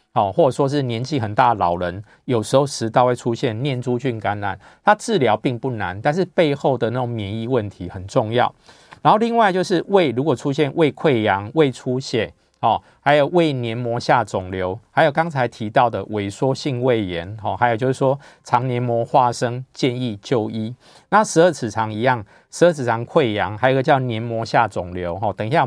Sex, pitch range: male, 110-140 Hz